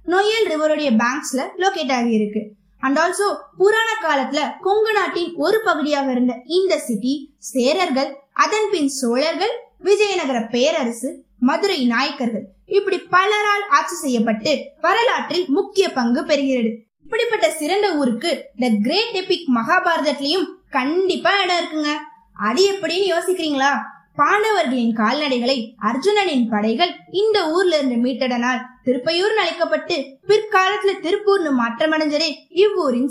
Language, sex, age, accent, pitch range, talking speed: Tamil, female, 20-39, native, 255-370 Hz, 75 wpm